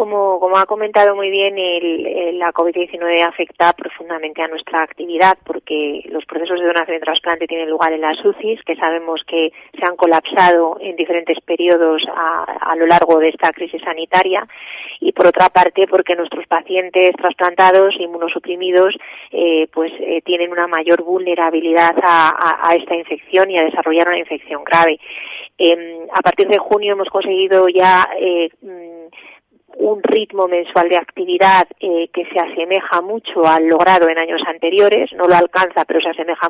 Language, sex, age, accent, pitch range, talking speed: Spanish, female, 30-49, Spanish, 170-195 Hz, 160 wpm